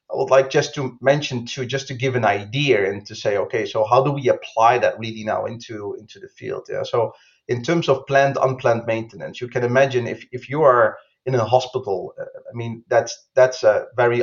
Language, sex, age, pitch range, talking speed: English, male, 30-49, 110-140 Hz, 225 wpm